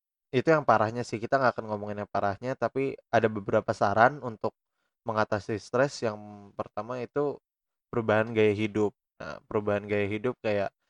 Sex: male